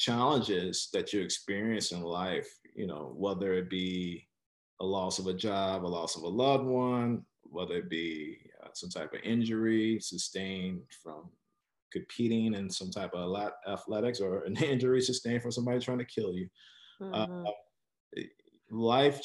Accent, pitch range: American, 95-120 Hz